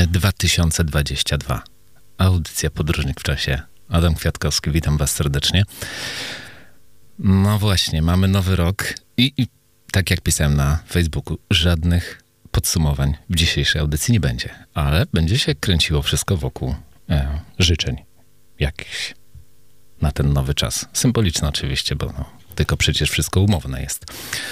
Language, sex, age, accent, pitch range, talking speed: Polish, male, 40-59, native, 75-95 Hz, 125 wpm